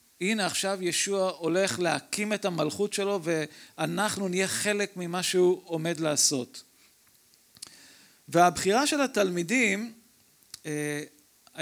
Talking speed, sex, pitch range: 100 wpm, male, 175-230 Hz